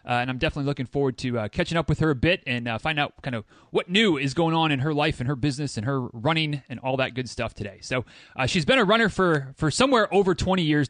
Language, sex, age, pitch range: English, male, 30-49, 130-170 Hz